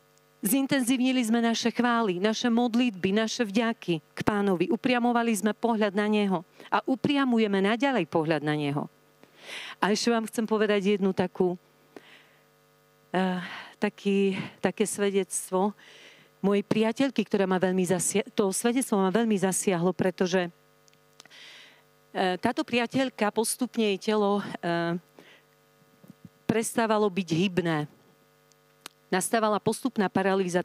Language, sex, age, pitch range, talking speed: Slovak, female, 40-59, 185-230 Hz, 105 wpm